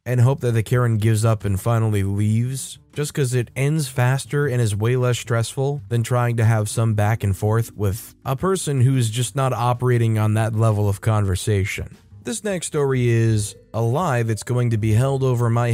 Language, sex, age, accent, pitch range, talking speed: English, male, 20-39, American, 110-140 Hz, 200 wpm